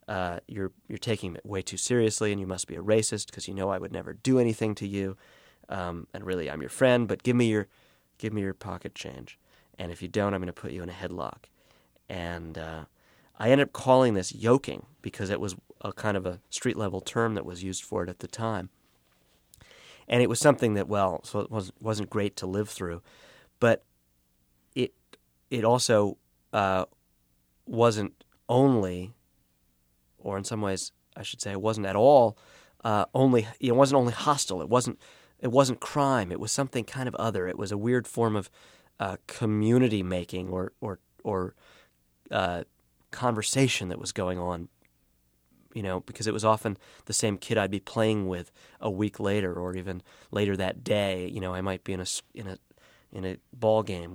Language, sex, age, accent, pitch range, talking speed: English, male, 30-49, American, 90-110 Hz, 195 wpm